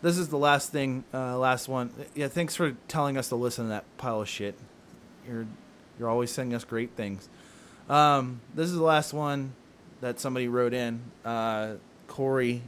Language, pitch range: English, 120-135 Hz